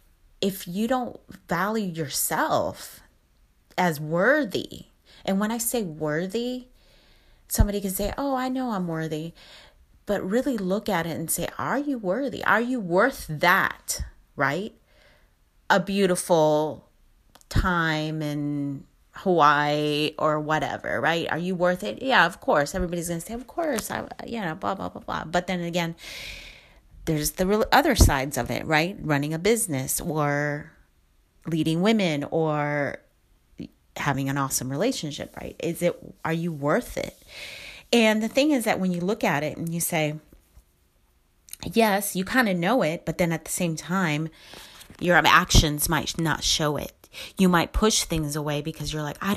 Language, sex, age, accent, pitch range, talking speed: English, female, 30-49, American, 150-205 Hz, 155 wpm